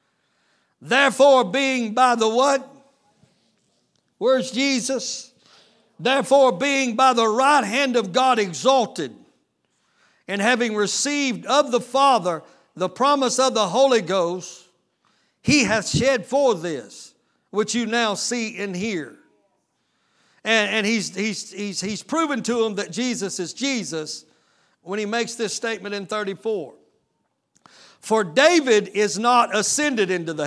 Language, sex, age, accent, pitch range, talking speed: English, male, 60-79, American, 205-265 Hz, 130 wpm